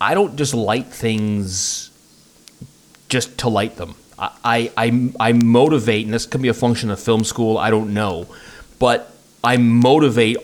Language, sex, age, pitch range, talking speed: English, male, 30-49, 95-115 Hz, 160 wpm